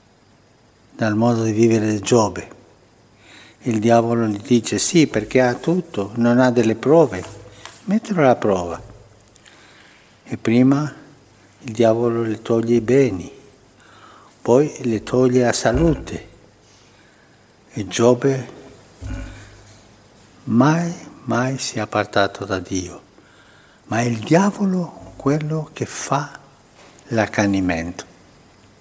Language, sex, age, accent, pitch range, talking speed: Italian, male, 60-79, native, 105-140 Hz, 105 wpm